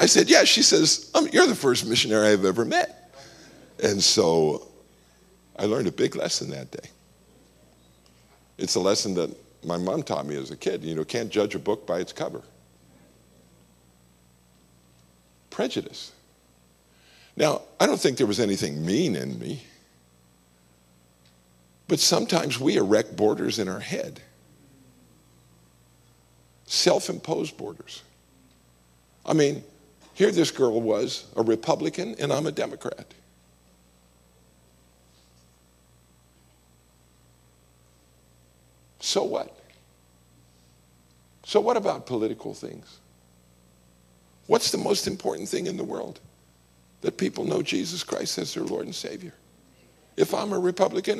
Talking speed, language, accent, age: 120 wpm, English, American, 50-69